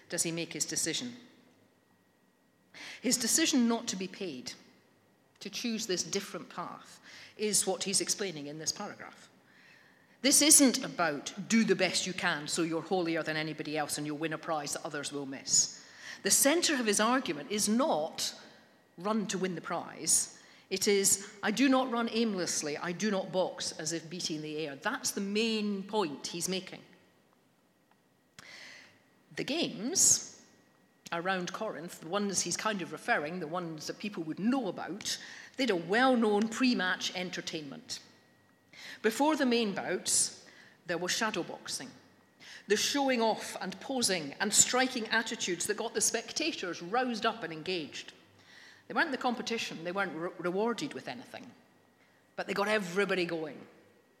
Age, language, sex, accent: 50-69, English, female, British